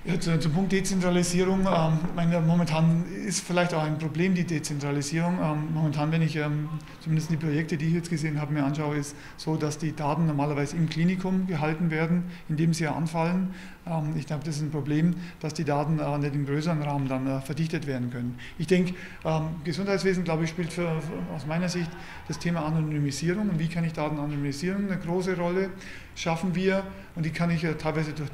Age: 40-59